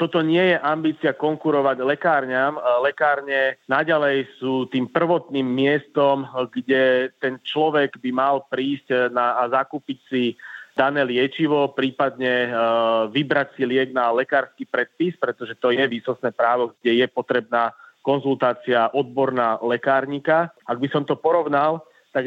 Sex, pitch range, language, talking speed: male, 130-150 Hz, Slovak, 130 wpm